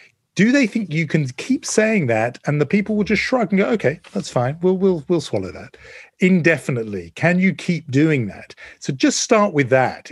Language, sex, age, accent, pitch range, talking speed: English, male, 40-59, British, 120-175 Hz, 215 wpm